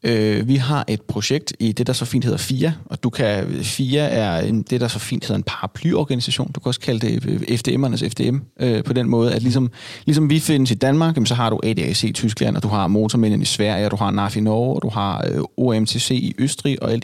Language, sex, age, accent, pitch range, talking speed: Danish, male, 30-49, native, 110-135 Hz, 245 wpm